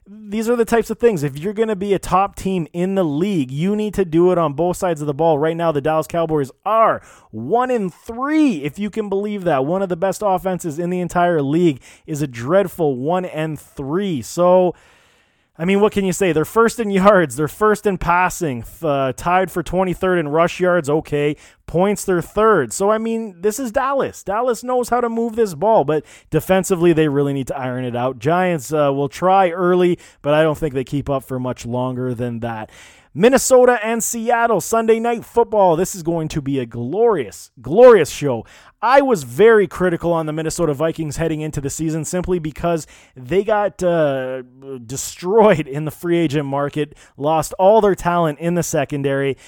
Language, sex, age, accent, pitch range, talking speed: English, male, 20-39, American, 150-195 Hz, 200 wpm